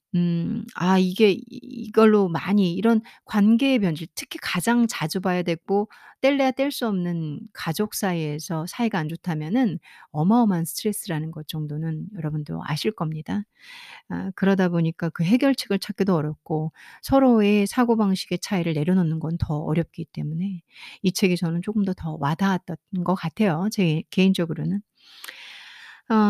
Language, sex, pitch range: Korean, female, 170-225 Hz